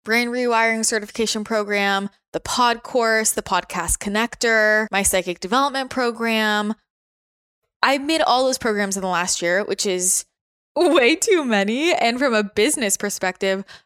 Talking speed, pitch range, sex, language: 145 wpm, 200-245 Hz, female, English